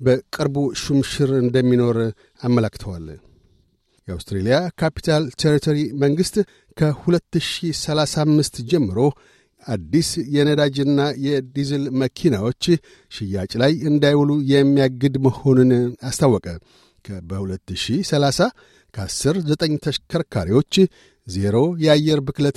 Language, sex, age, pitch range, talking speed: Amharic, male, 60-79, 125-155 Hz, 65 wpm